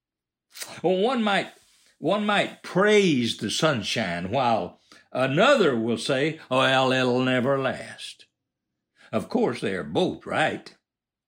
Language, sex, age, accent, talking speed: English, male, 60-79, American, 105 wpm